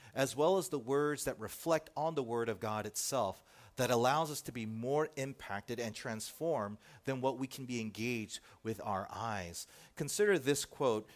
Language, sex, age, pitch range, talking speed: English, male, 40-59, 105-150 Hz, 185 wpm